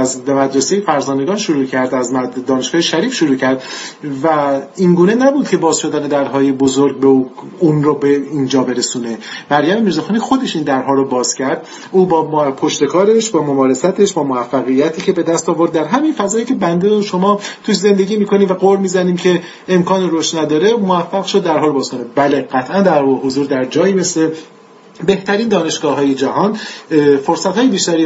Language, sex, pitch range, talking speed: Persian, male, 135-190 Hz, 160 wpm